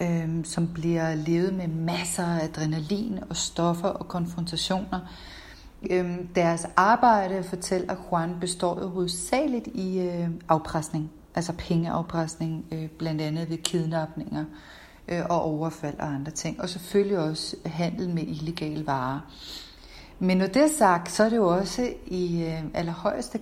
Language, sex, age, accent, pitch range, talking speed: Danish, female, 40-59, native, 165-195 Hz, 130 wpm